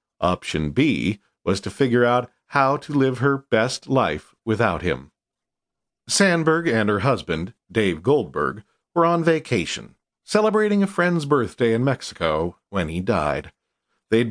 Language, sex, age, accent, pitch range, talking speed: English, male, 50-69, American, 95-145 Hz, 140 wpm